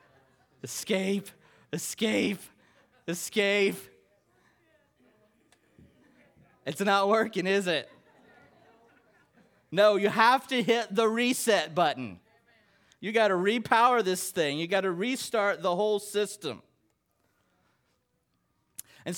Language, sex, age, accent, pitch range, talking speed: English, male, 30-49, American, 140-205 Hz, 95 wpm